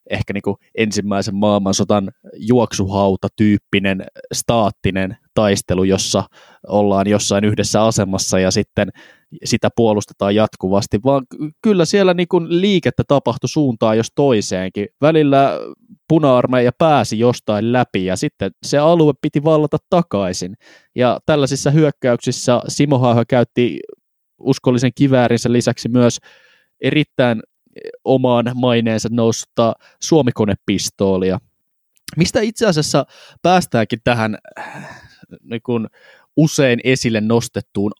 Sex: male